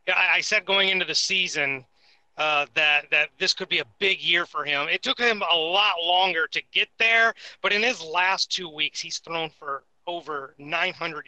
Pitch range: 145-190 Hz